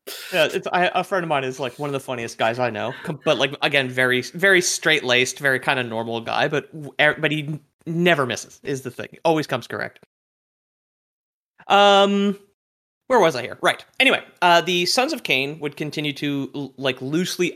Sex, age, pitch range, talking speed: male, 30-49, 130-165 Hz, 190 wpm